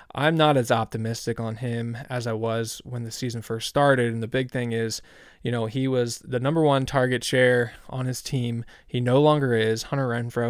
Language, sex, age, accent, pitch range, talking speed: English, male, 20-39, American, 115-135 Hz, 210 wpm